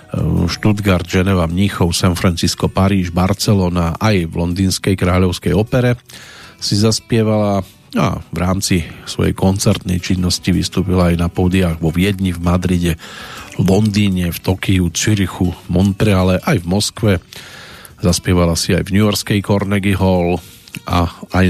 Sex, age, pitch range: male, 40-59, 90-105 Hz